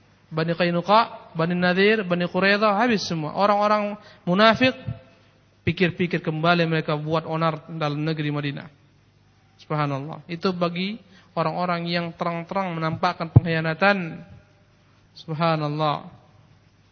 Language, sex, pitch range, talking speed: Indonesian, male, 150-205 Hz, 95 wpm